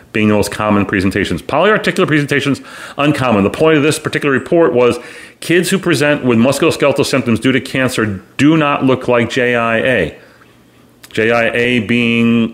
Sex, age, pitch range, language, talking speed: male, 40-59, 105-135 Hz, English, 145 wpm